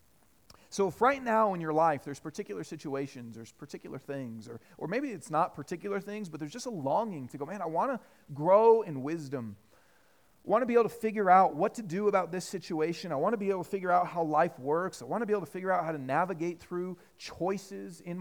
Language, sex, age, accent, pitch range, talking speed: English, male, 40-59, American, 150-215 Hz, 240 wpm